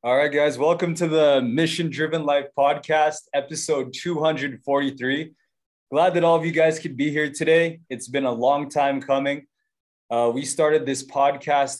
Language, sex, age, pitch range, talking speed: English, male, 20-39, 125-155 Hz, 180 wpm